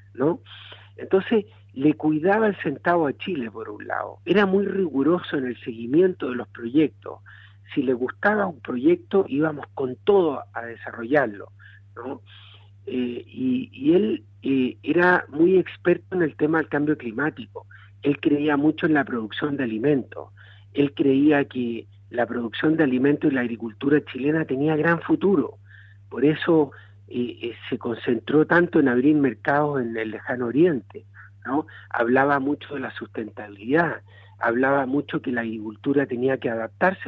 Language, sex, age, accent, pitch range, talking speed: Spanish, male, 50-69, Argentinian, 110-155 Hz, 150 wpm